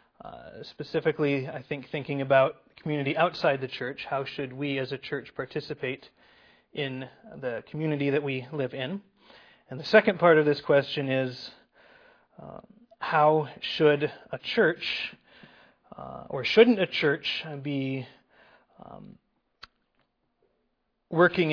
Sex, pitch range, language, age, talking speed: male, 135-170 Hz, English, 30-49, 125 wpm